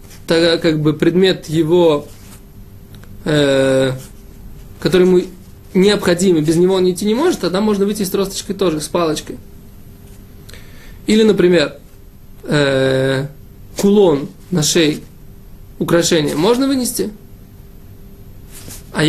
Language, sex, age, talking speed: Russian, male, 20-39, 105 wpm